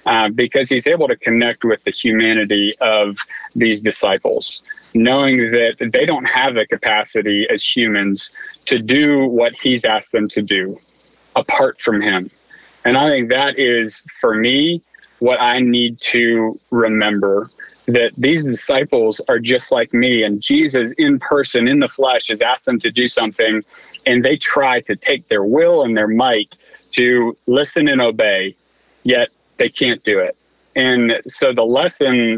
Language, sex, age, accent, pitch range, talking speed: English, male, 30-49, American, 115-145 Hz, 160 wpm